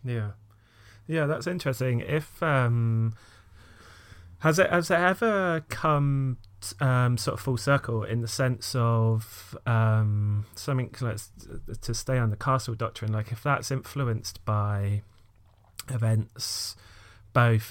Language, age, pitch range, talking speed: English, 30-49, 105-120 Hz, 130 wpm